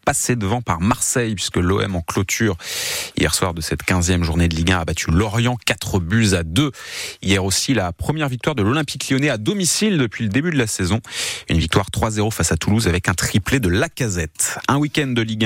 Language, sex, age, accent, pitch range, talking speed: French, male, 30-49, French, 85-120 Hz, 215 wpm